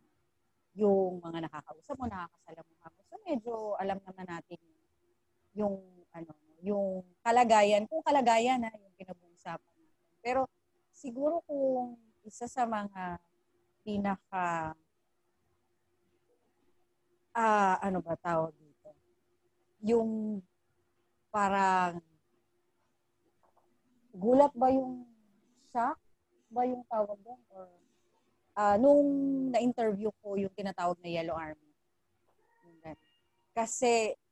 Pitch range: 175-230 Hz